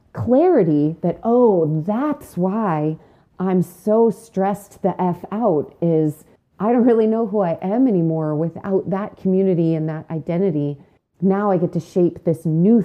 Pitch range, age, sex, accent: 165-210 Hz, 30-49, female, American